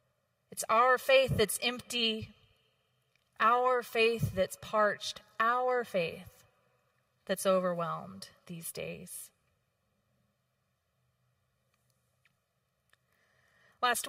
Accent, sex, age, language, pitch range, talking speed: American, female, 30-49, English, 170-230 Hz, 70 wpm